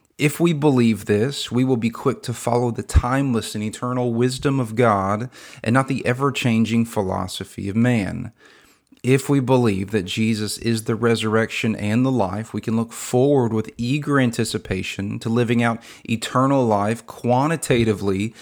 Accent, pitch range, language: American, 105-120 Hz, English